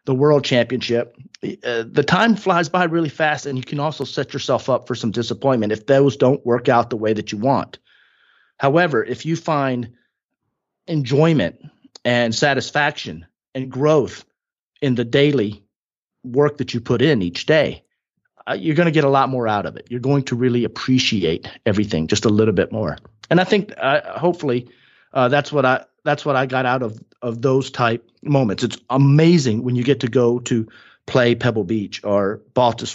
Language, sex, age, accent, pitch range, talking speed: English, male, 40-59, American, 110-145 Hz, 190 wpm